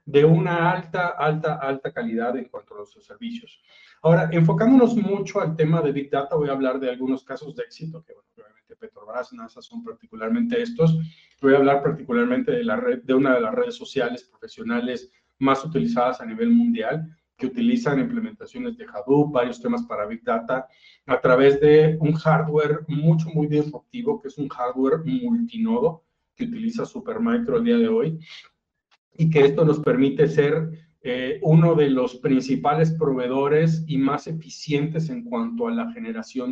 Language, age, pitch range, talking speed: Spanish, 30-49, 140-230 Hz, 170 wpm